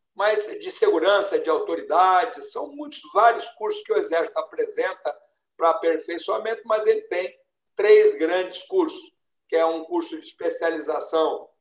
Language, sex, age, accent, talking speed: Portuguese, male, 60-79, Brazilian, 140 wpm